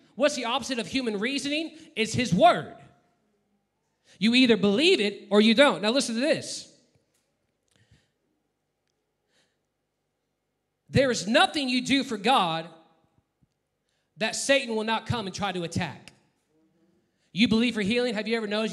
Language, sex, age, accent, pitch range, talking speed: English, male, 30-49, American, 175-220 Hz, 140 wpm